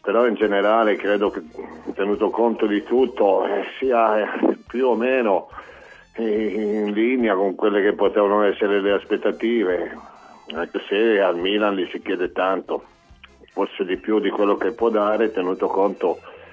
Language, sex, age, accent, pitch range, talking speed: Italian, male, 50-69, native, 95-110 Hz, 145 wpm